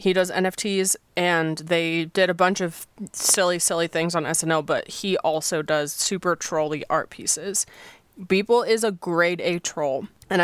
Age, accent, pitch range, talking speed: 20-39, American, 165-200 Hz, 165 wpm